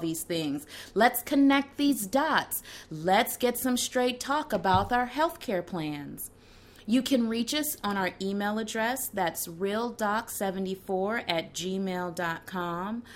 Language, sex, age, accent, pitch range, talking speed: English, female, 30-49, American, 175-245 Hz, 130 wpm